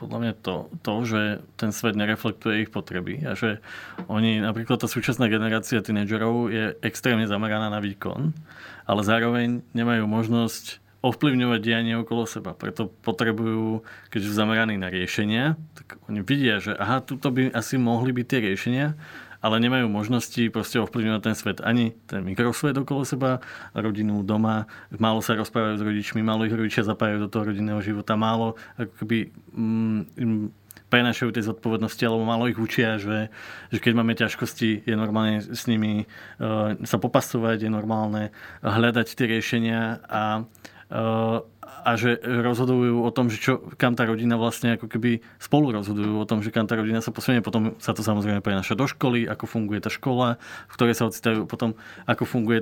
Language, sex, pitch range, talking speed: Slovak, male, 110-120 Hz, 170 wpm